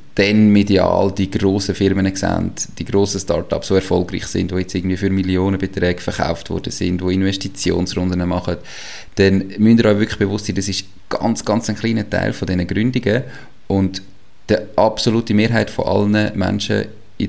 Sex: male